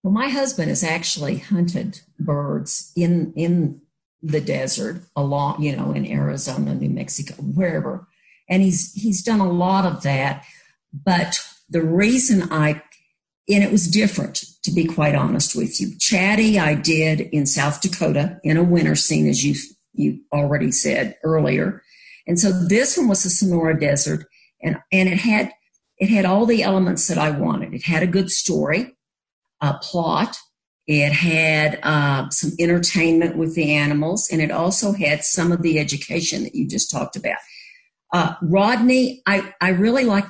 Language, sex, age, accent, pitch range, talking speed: English, female, 50-69, American, 155-195 Hz, 165 wpm